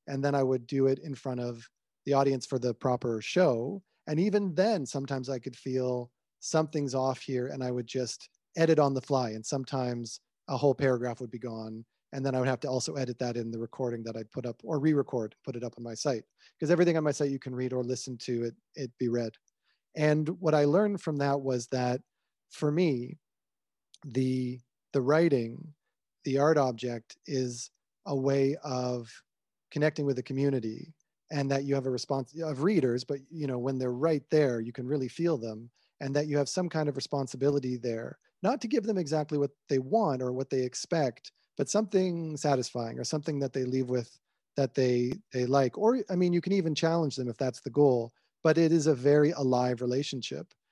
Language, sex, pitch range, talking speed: English, male, 125-150 Hz, 210 wpm